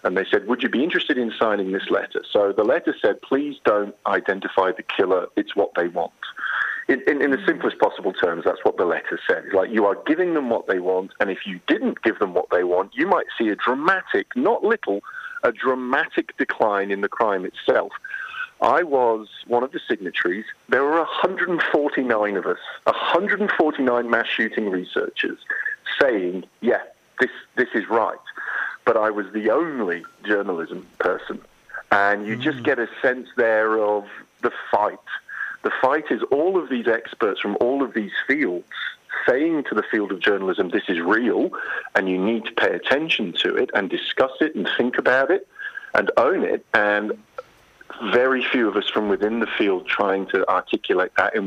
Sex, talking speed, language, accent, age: male, 185 wpm, English, British, 40-59